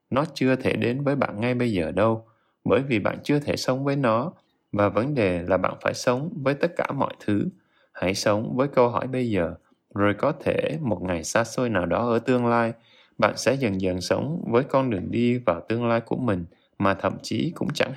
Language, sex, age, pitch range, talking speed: Vietnamese, male, 20-39, 100-130 Hz, 225 wpm